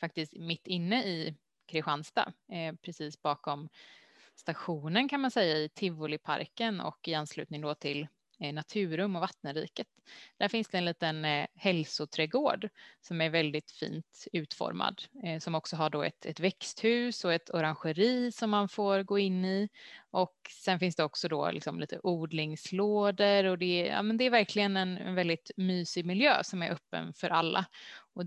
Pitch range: 160-205 Hz